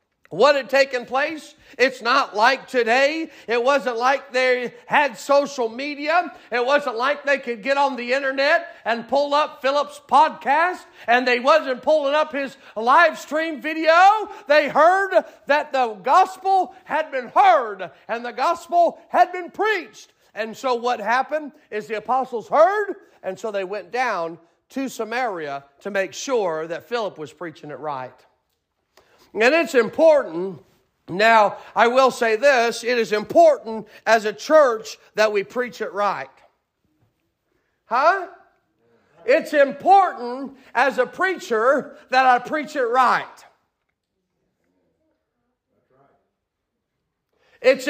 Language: English